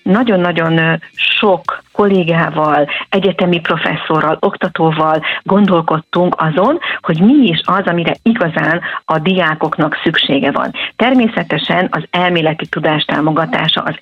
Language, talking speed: Hungarian, 100 wpm